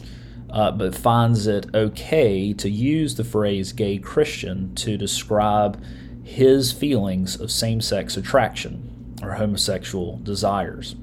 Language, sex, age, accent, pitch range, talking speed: English, male, 30-49, American, 95-120 Hz, 115 wpm